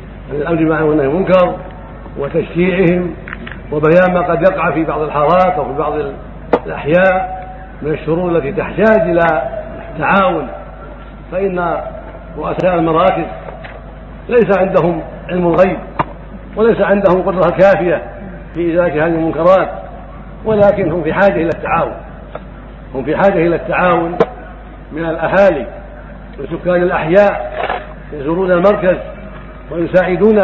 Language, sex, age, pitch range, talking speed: Arabic, male, 60-79, 165-195 Hz, 105 wpm